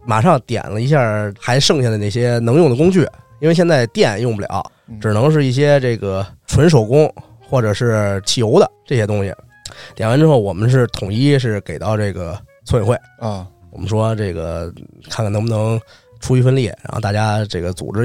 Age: 20-39